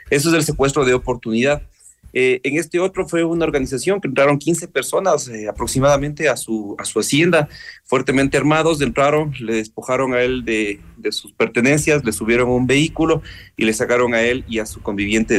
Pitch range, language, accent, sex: 110-140 Hz, Spanish, Mexican, male